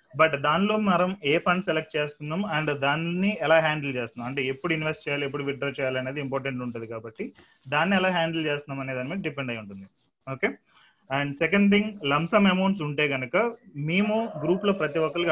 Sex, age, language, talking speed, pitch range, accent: male, 30-49, Telugu, 180 wpm, 135-170 Hz, native